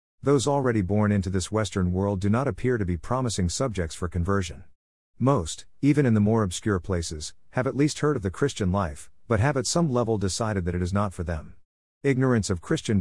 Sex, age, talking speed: male, 50-69, 210 wpm